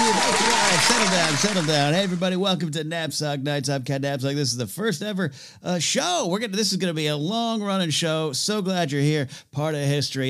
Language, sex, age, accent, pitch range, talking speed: English, male, 40-59, American, 140-200 Hz, 220 wpm